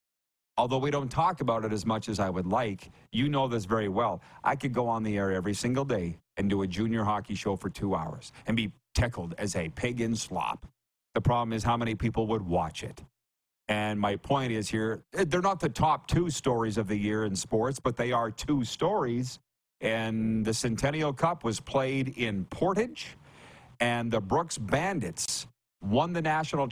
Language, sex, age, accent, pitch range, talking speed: English, male, 50-69, American, 110-130 Hz, 200 wpm